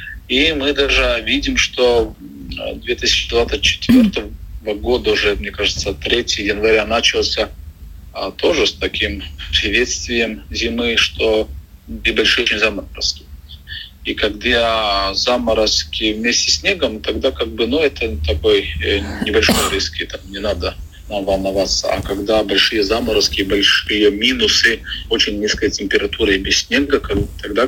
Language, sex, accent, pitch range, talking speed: Russian, male, native, 80-120 Hz, 115 wpm